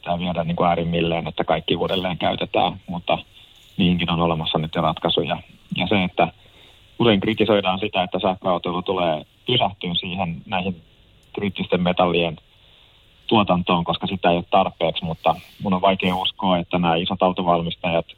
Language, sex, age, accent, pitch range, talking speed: Finnish, male, 30-49, native, 85-95 Hz, 140 wpm